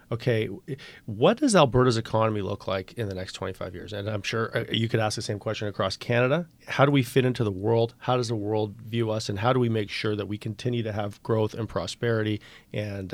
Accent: American